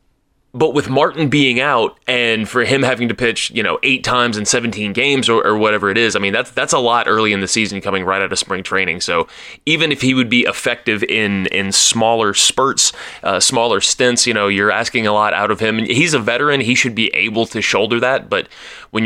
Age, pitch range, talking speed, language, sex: 20-39, 105-130 Hz, 235 wpm, English, male